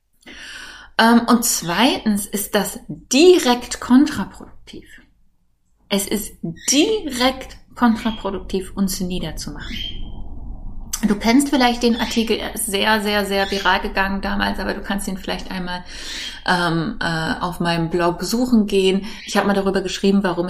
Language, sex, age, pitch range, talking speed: German, female, 20-39, 185-230 Hz, 130 wpm